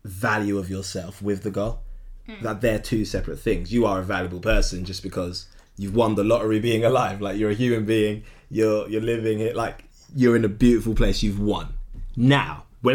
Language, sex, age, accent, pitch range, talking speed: English, male, 20-39, British, 105-145 Hz, 200 wpm